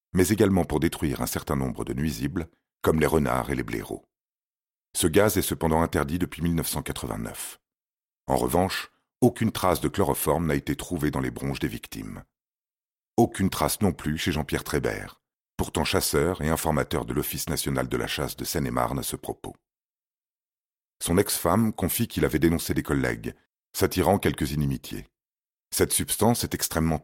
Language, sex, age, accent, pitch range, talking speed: French, male, 40-59, French, 70-90 Hz, 160 wpm